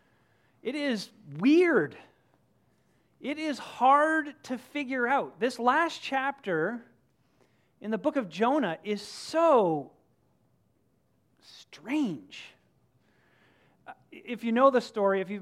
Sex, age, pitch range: male, 40-59, 170-225 Hz